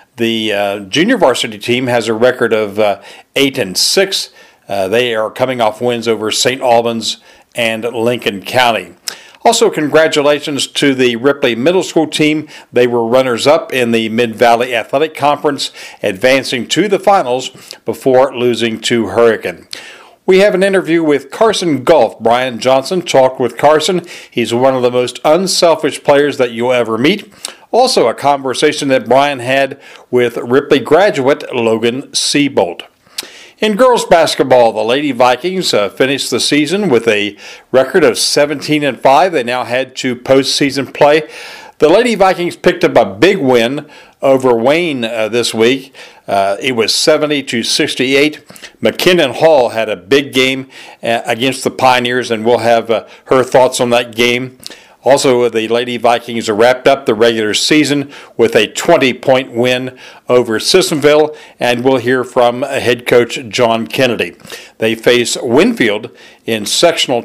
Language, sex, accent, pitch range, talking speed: English, male, American, 120-145 Hz, 150 wpm